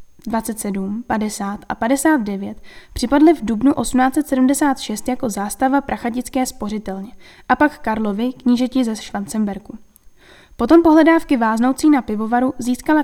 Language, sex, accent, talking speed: Czech, female, native, 110 wpm